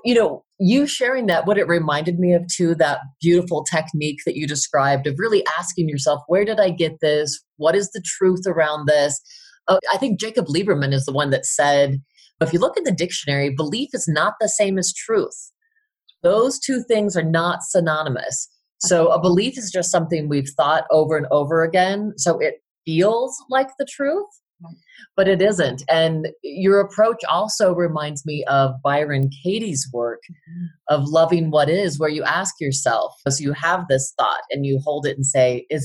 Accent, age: American, 30-49